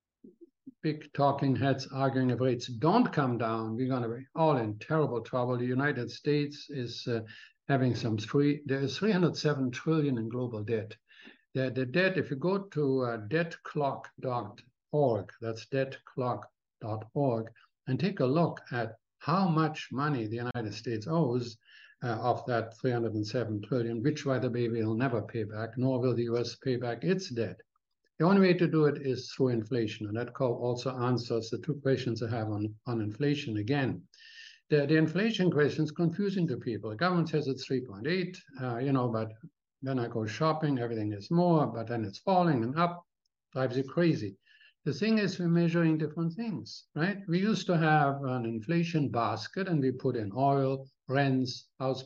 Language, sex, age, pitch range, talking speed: English, male, 60-79, 120-160 Hz, 175 wpm